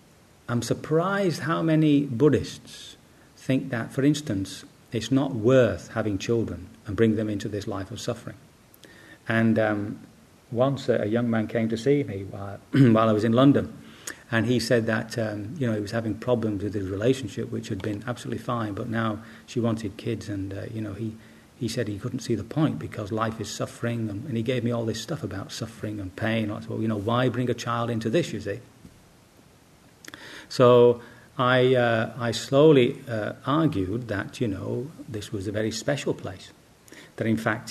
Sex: male